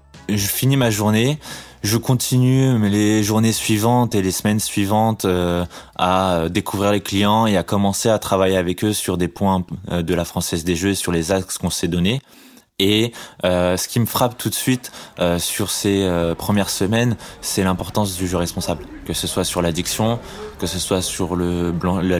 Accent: French